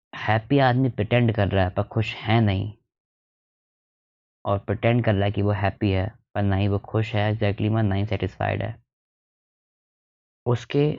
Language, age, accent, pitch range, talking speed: Hindi, 20-39, native, 100-115 Hz, 165 wpm